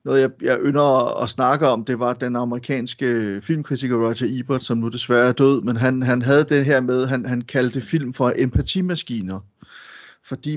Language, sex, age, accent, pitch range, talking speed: Danish, male, 30-49, native, 120-135 Hz, 195 wpm